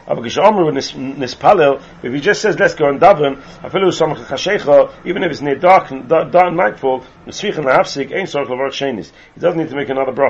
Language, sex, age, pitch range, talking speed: English, male, 40-59, 135-190 Hz, 130 wpm